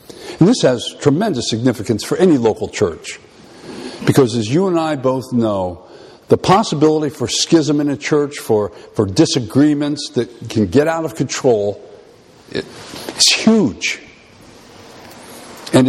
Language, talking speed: English, 130 wpm